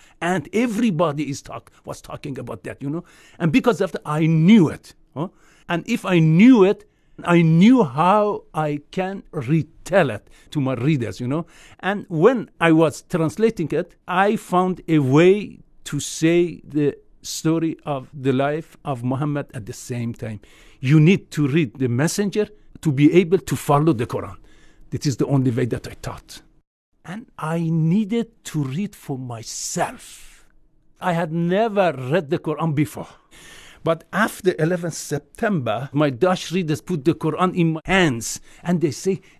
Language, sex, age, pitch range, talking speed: English, male, 50-69, 145-190 Hz, 165 wpm